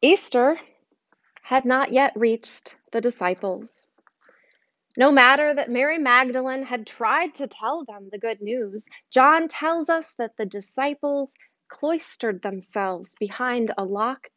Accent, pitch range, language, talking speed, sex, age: American, 215-280 Hz, English, 130 wpm, female, 30-49